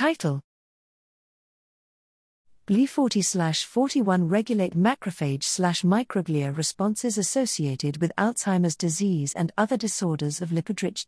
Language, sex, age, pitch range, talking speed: English, female, 40-59, 155-210 Hz, 75 wpm